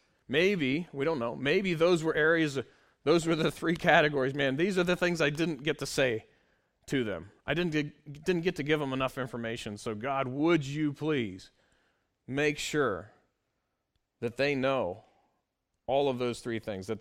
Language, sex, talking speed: English, male, 180 wpm